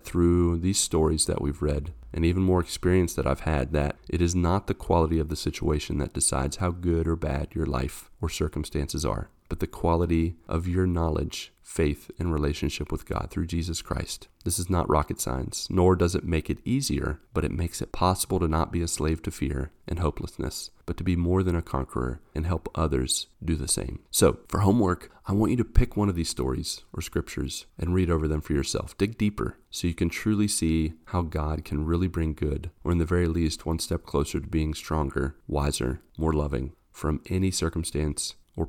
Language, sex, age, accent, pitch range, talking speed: English, male, 40-59, American, 75-90 Hz, 210 wpm